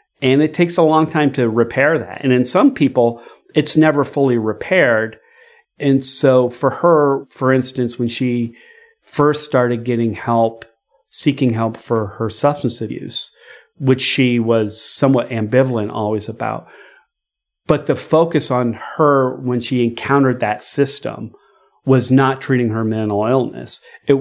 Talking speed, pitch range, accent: 145 wpm, 110-130 Hz, American